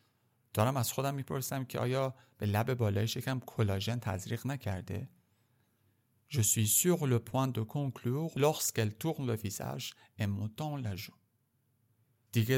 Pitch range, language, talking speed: 110-135 Hz, Persian, 75 wpm